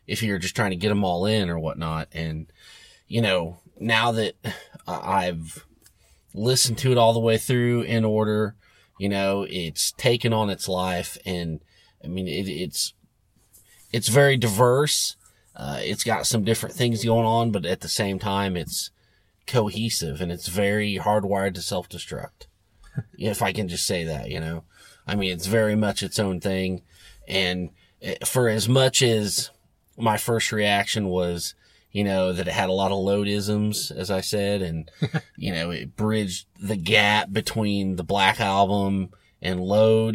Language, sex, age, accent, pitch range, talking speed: English, male, 30-49, American, 95-115 Hz, 170 wpm